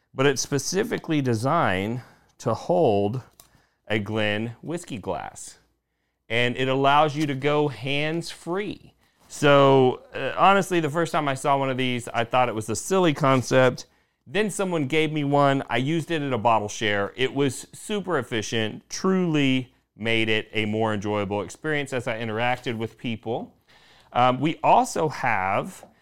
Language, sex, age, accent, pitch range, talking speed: English, male, 40-59, American, 120-150 Hz, 155 wpm